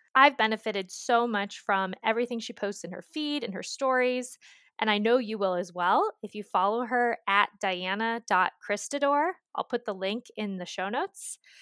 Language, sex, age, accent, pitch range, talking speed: English, female, 20-39, American, 185-255 Hz, 180 wpm